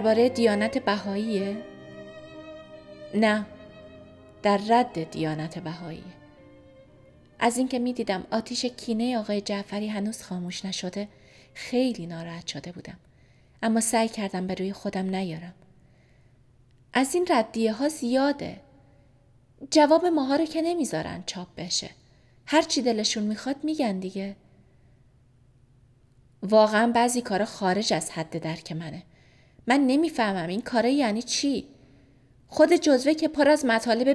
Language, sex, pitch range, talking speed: Persian, female, 155-250 Hz, 120 wpm